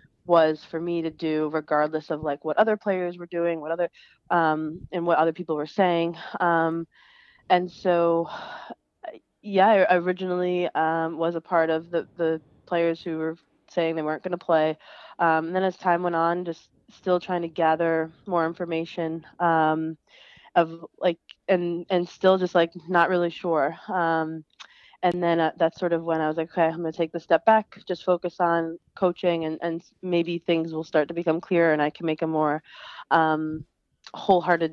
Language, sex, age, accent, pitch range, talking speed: English, female, 20-39, American, 160-175 Hz, 190 wpm